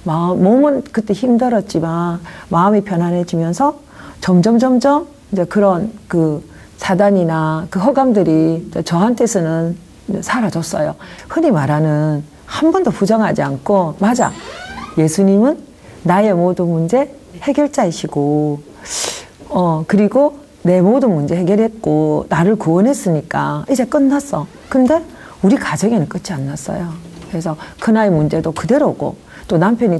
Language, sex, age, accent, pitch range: Korean, female, 40-59, native, 165-235 Hz